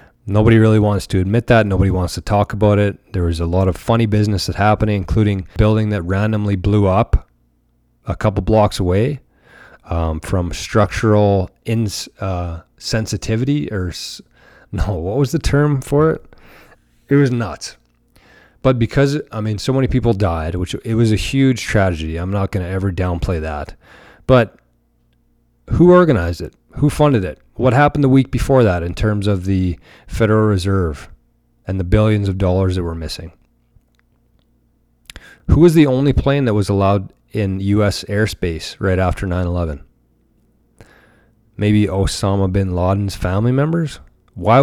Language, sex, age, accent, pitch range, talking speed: English, male, 30-49, American, 90-115 Hz, 160 wpm